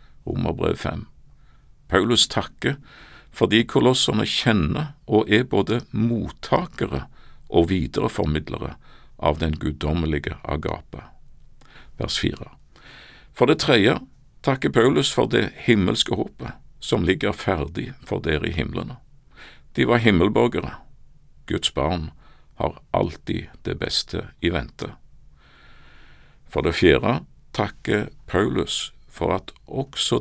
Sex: male